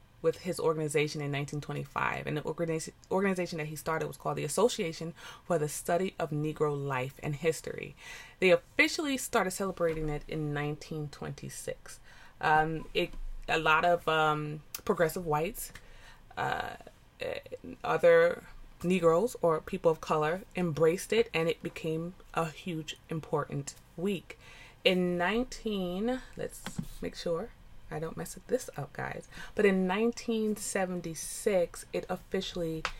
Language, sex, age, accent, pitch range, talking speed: English, female, 20-39, American, 150-180 Hz, 130 wpm